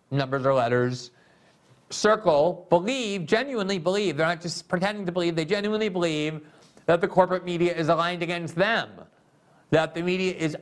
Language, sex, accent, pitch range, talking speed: English, male, American, 145-185 Hz, 160 wpm